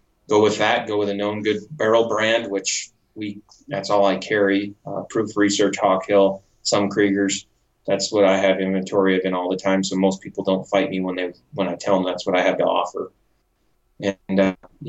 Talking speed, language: 210 wpm, English